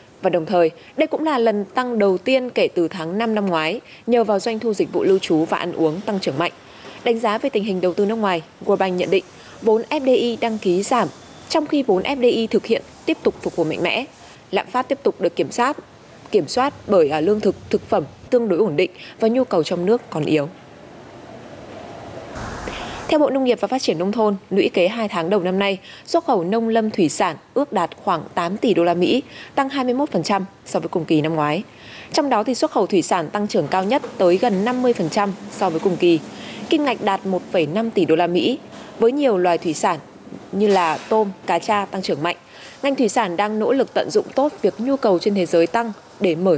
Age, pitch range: 20-39, 180-245 Hz